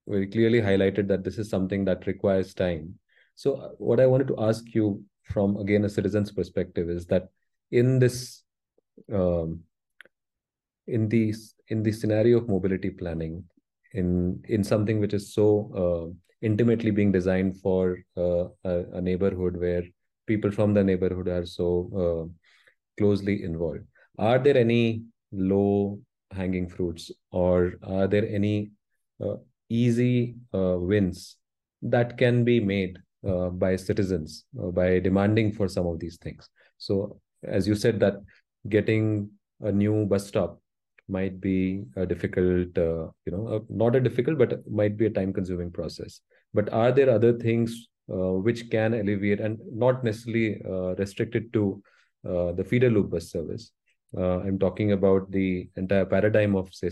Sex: male